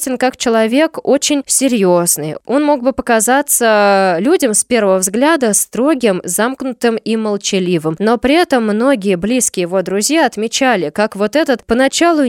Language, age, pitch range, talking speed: Russian, 20-39, 190-265 Hz, 135 wpm